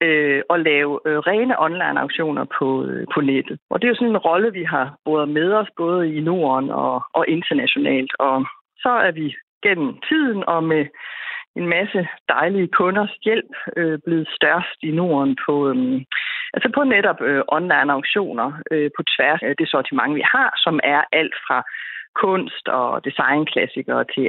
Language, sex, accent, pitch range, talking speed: Danish, female, native, 155-220 Hz, 160 wpm